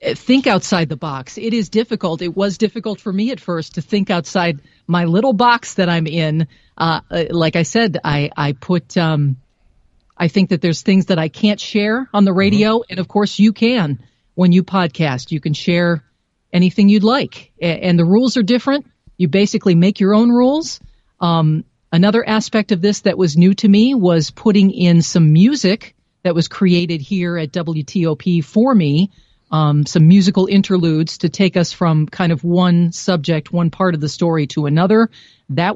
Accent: American